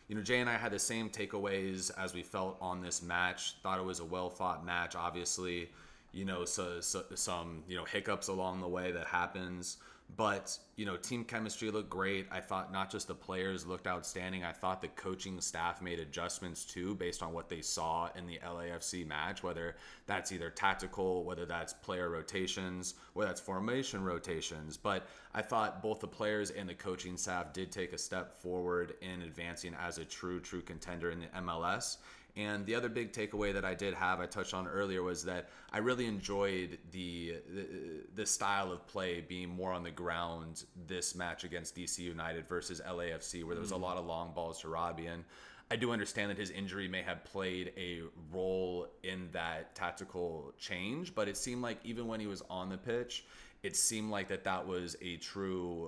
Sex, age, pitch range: male, 30-49, 85-95 Hz